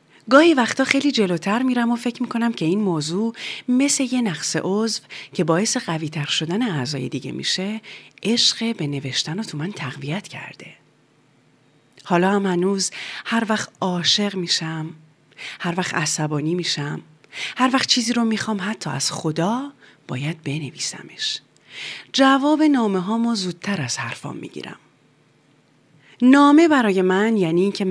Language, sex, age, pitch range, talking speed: Persian, female, 30-49, 160-255 Hz, 135 wpm